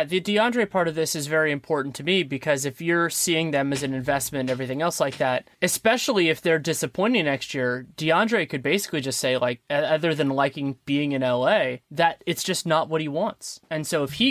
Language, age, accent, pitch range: English, 20-39, American, 135-180 Hz